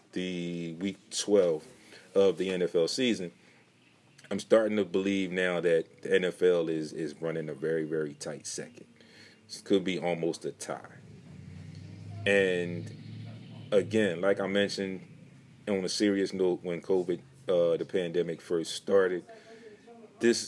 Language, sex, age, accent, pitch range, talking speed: English, male, 30-49, American, 90-120 Hz, 135 wpm